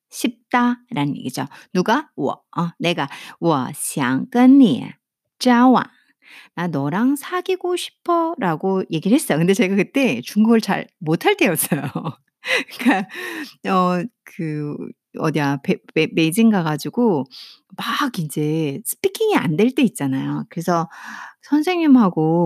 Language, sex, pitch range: Korean, female, 170-255 Hz